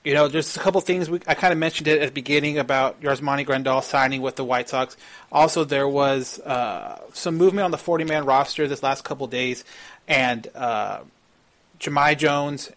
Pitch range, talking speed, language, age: 130-150 Hz, 200 wpm, English, 30-49